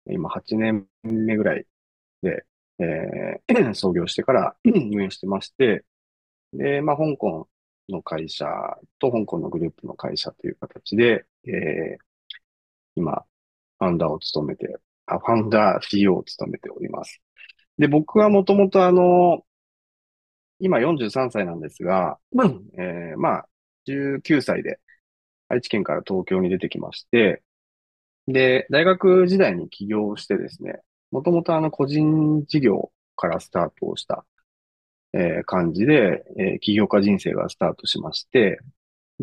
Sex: male